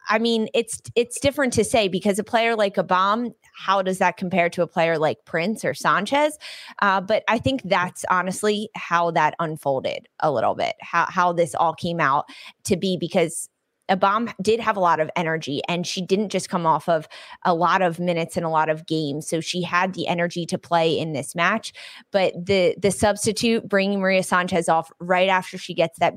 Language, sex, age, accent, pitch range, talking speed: English, female, 20-39, American, 170-210 Hz, 205 wpm